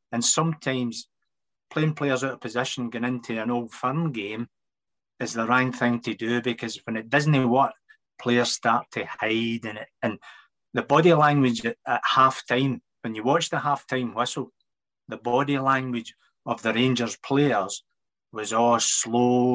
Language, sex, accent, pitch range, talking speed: English, male, British, 120-140 Hz, 165 wpm